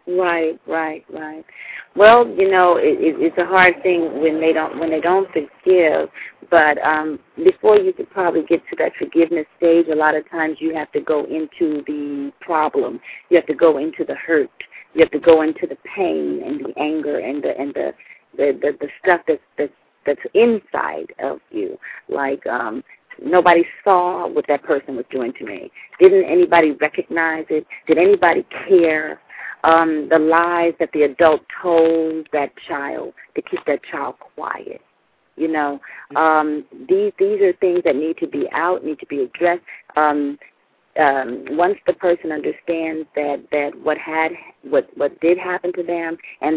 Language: English